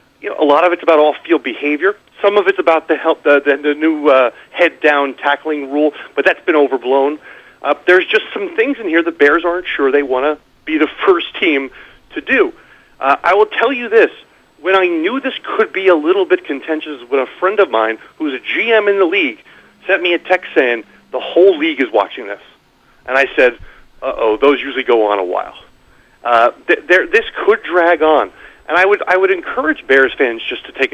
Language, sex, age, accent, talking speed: English, male, 40-59, American, 220 wpm